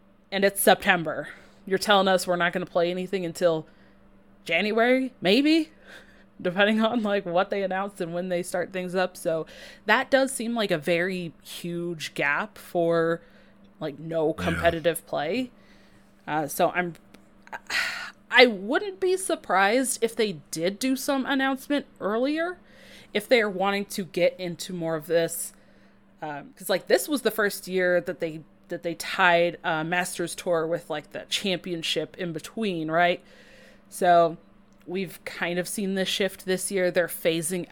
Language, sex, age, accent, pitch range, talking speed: English, female, 20-39, American, 170-235 Hz, 160 wpm